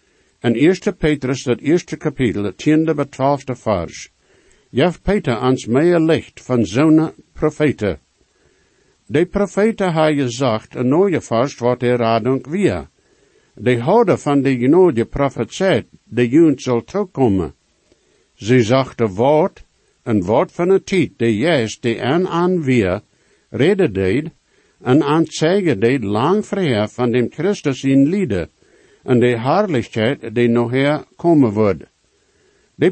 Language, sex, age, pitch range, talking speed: English, male, 60-79, 120-170 Hz, 135 wpm